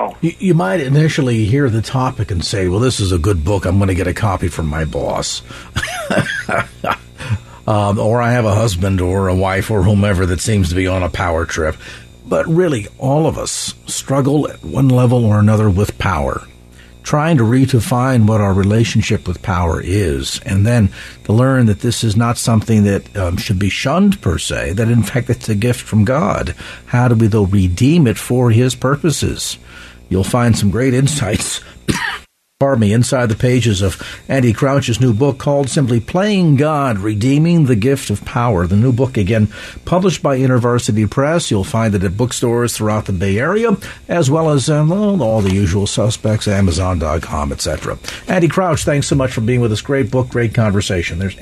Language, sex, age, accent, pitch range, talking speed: English, male, 50-69, American, 100-140 Hz, 185 wpm